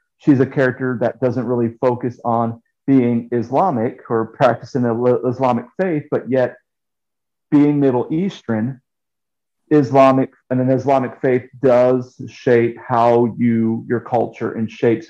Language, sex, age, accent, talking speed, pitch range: English, male, 40-59, American, 125 wpm, 115-130 Hz